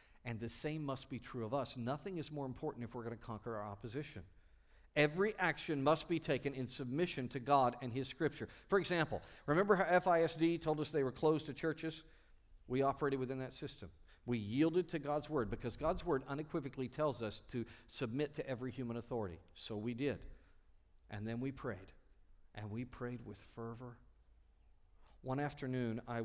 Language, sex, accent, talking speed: English, male, American, 185 wpm